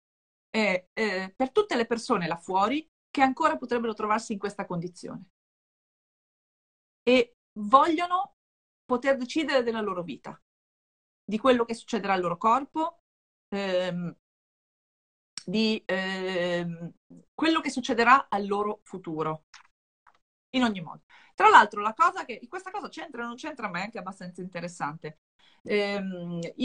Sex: female